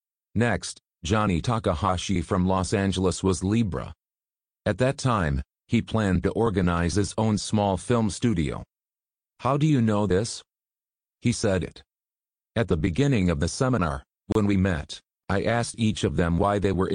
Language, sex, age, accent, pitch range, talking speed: English, male, 40-59, American, 90-110 Hz, 160 wpm